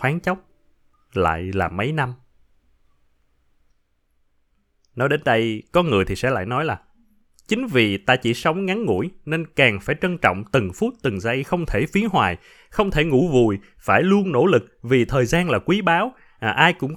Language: Vietnamese